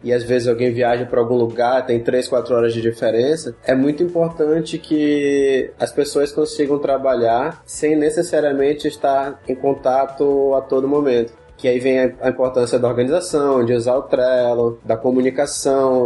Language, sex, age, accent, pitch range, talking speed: Portuguese, male, 20-39, Brazilian, 125-145 Hz, 160 wpm